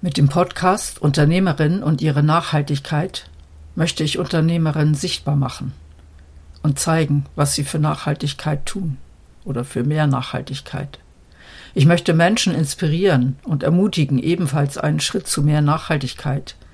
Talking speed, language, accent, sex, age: 125 wpm, German, German, female, 60-79